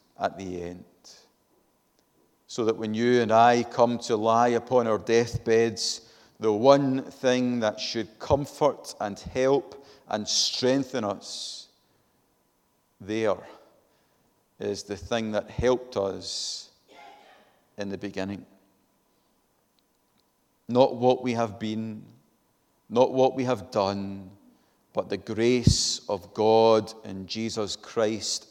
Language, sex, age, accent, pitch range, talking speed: English, male, 40-59, British, 105-125 Hz, 115 wpm